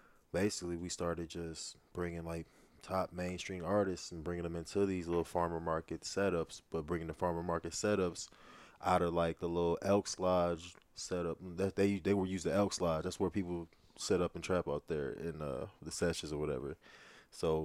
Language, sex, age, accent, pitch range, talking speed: English, male, 20-39, American, 85-95 Hz, 190 wpm